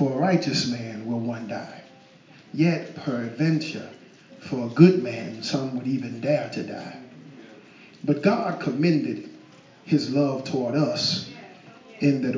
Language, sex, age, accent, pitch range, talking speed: English, male, 50-69, American, 130-165 Hz, 135 wpm